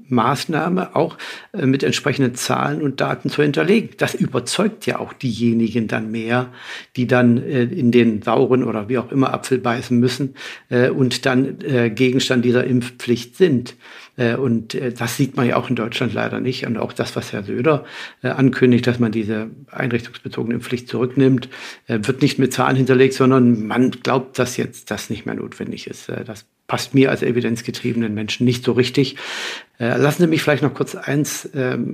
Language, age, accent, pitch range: German, 60-79, German, 120-135 Hz